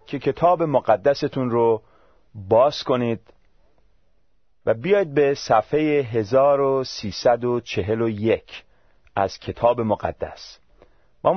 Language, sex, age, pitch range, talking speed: Persian, male, 40-59, 100-135 Hz, 80 wpm